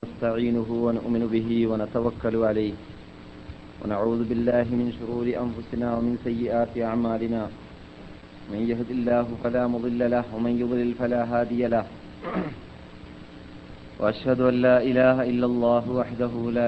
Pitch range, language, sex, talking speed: 105-125 Hz, Malayalam, male, 115 wpm